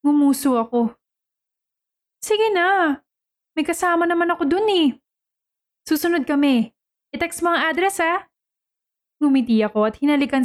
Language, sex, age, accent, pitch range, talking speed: Filipino, female, 20-39, native, 225-290 Hz, 115 wpm